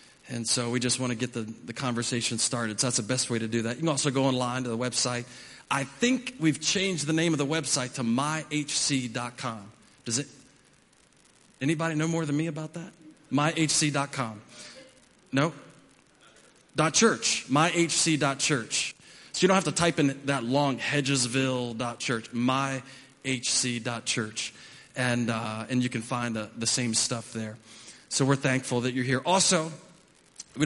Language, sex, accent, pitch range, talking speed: English, male, American, 120-145 Hz, 160 wpm